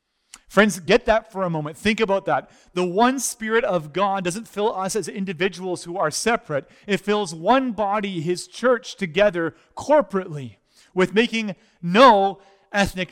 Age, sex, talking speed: 30-49, male, 155 wpm